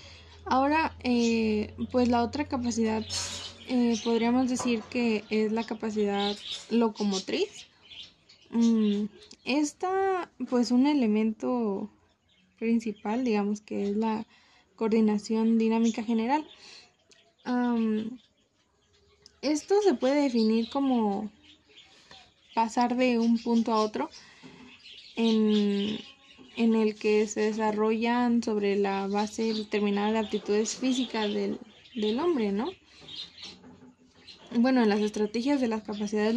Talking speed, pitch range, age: 100 wpm, 210-245 Hz, 20-39